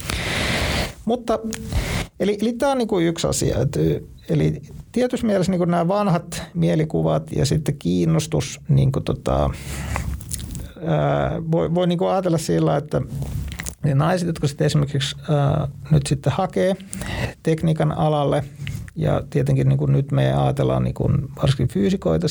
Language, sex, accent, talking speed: Finnish, male, native, 130 wpm